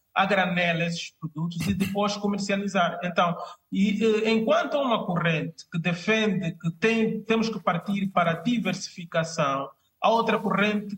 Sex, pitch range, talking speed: male, 180-215 Hz, 125 wpm